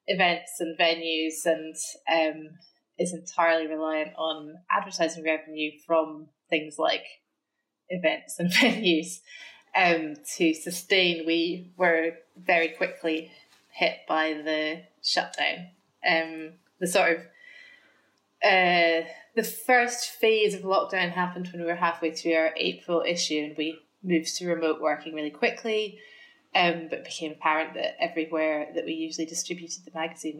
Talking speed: 135 wpm